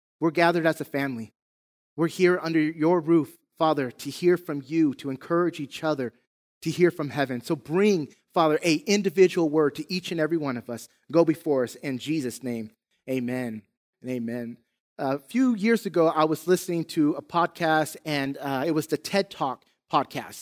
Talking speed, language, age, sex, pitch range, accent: 185 wpm, English, 30-49, male, 145-180 Hz, American